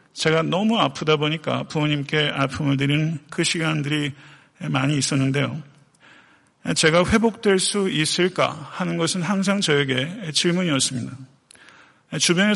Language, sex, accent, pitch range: Korean, male, native, 140-170 Hz